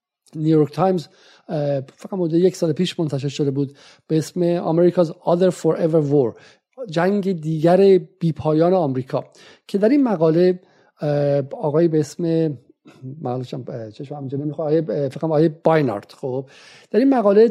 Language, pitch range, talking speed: Persian, 150-185 Hz, 125 wpm